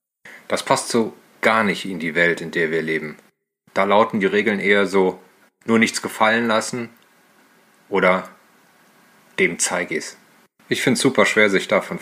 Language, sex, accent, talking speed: German, male, German, 170 wpm